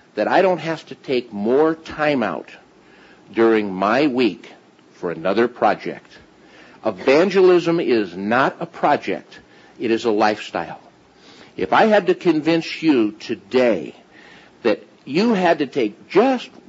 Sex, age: male, 50-69